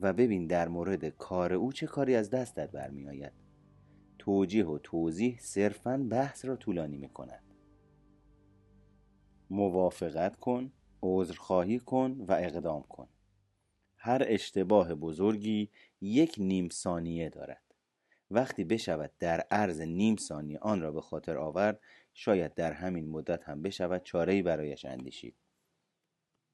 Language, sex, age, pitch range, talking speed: Persian, male, 30-49, 85-125 Hz, 125 wpm